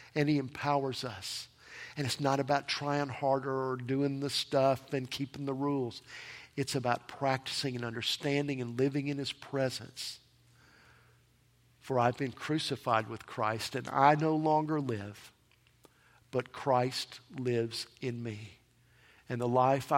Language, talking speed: English, 140 wpm